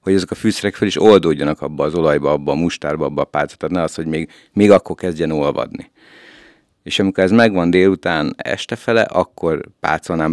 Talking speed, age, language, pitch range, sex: 200 wpm, 60-79, Hungarian, 75-95 Hz, male